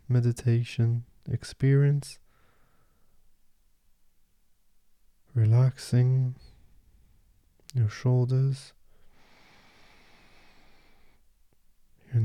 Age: 20-39